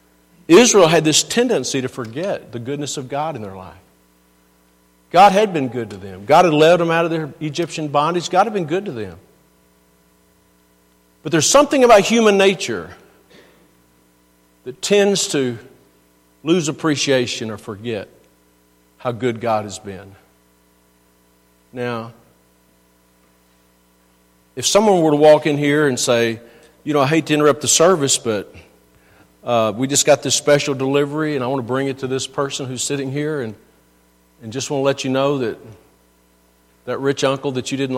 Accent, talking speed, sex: American, 165 wpm, male